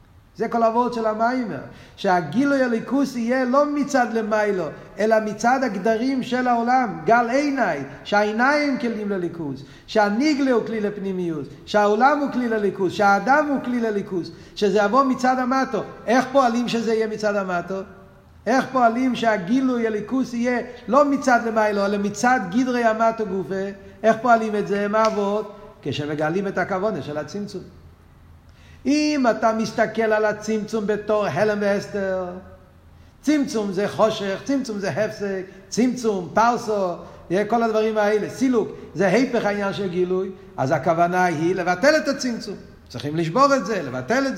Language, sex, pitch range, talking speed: Hebrew, male, 195-250 Hz, 140 wpm